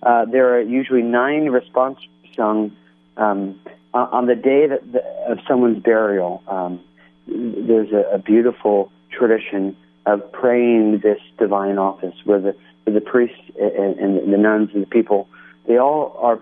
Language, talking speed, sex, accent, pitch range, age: English, 155 wpm, male, American, 95-125 Hz, 40-59